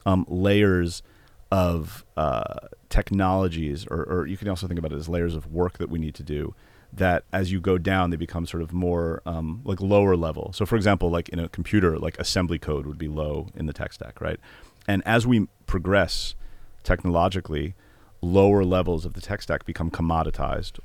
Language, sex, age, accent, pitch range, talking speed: Hebrew, male, 40-59, American, 85-100 Hz, 195 wpm